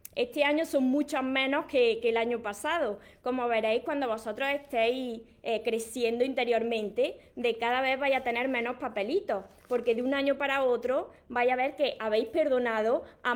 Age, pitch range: 20-39, 240-280 Hz